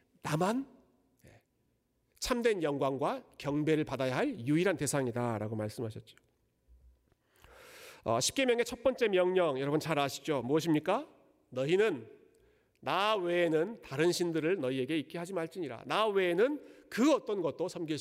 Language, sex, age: Korean, male, 40-59